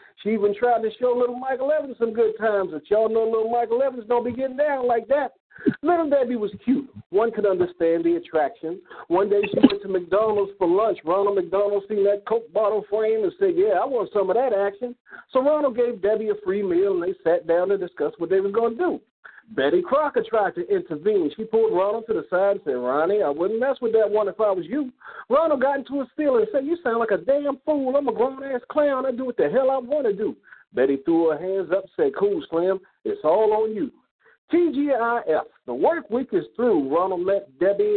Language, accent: English, American